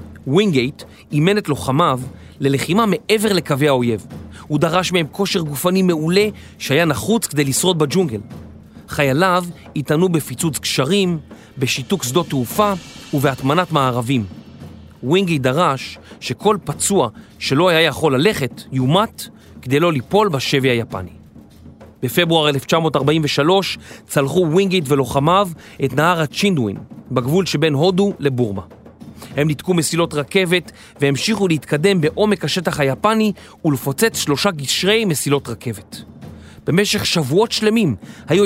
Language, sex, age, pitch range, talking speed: Hebrew, male, 30-49, 135-195 Hz, 110 wpm